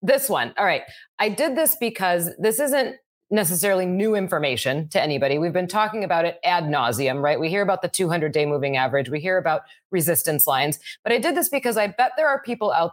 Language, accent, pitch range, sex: English, American, 150-195 Hz, female